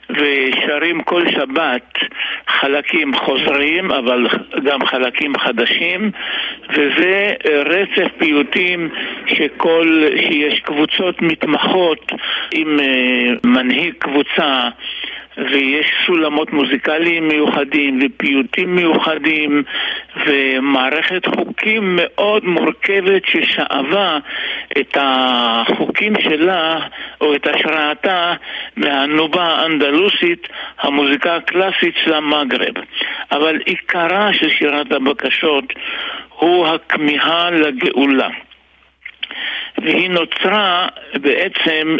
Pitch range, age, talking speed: 140-175 Hz, 60-79, 75 wpm